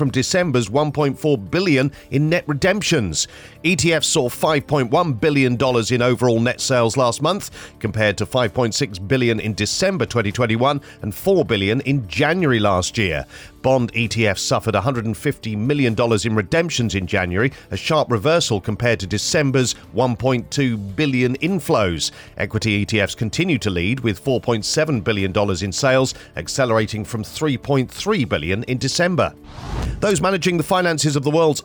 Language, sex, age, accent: English, male, 40-59, British